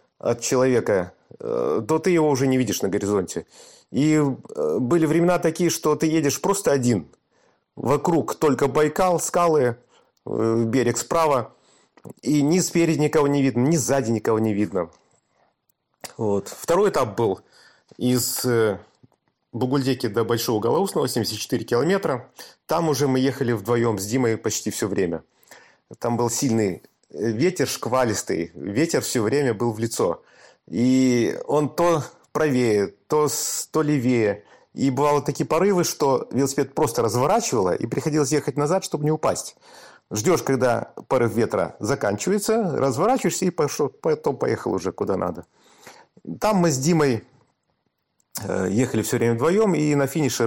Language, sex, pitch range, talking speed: Russian, male, 115-160 Hz, 135 wpm